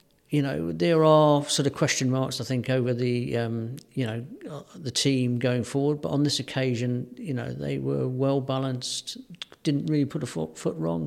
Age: 50-69